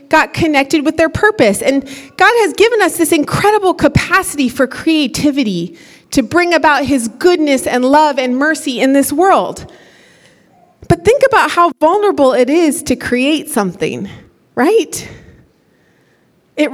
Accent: American